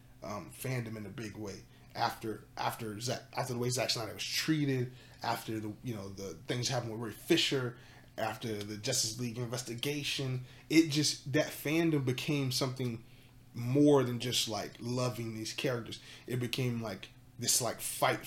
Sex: male